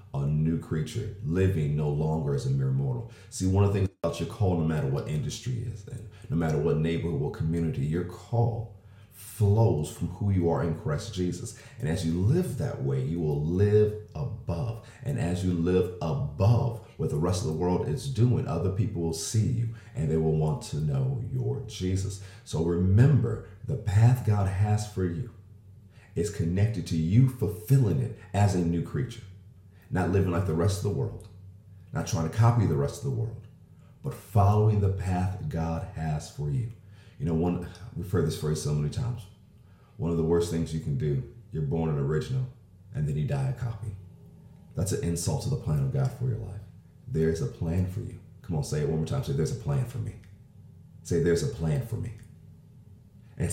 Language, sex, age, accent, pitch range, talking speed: English, male, 50-69, American, 90-120 Hz, 205 wpm